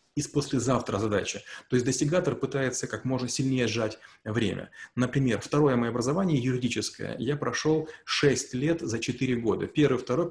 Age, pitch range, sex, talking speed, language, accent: 30-49, 110-140 Hz, male, 150 wpm, Russian, native